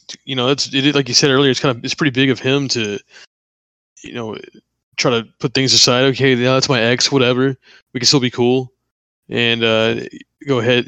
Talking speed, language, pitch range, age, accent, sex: 215 wpm, English, 115-135 Hz, 20-39, American, male